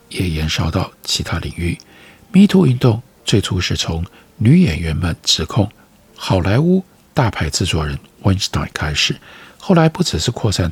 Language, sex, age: Chinese, male, 50-69